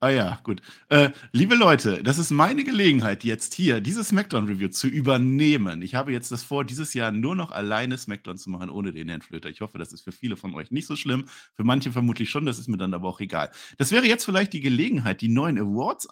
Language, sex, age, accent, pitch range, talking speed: German, male, 50-69, German, 95-140 Hz, 240 wpm